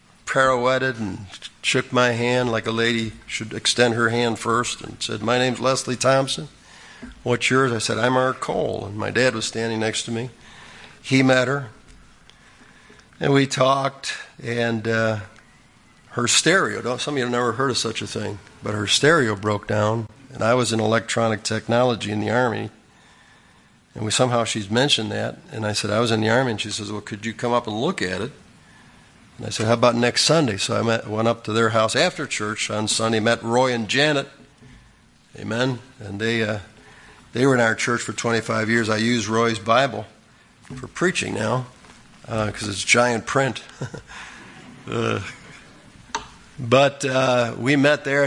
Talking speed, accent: 180 wpm, American